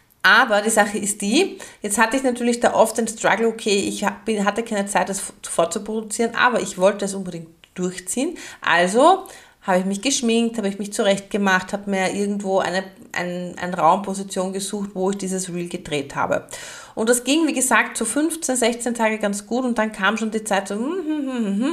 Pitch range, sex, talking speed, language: 190-235 Hz, female, 190 wpm, German